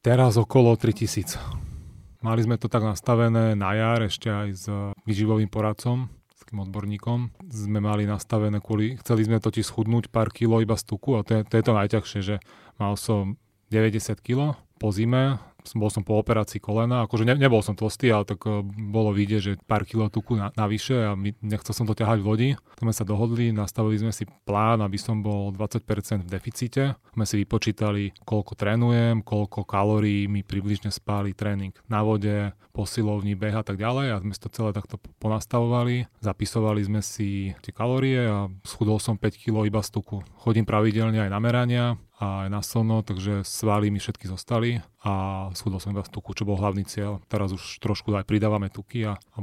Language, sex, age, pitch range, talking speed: Slovak, male, 30-49, 105-115 Hz, 185 wpm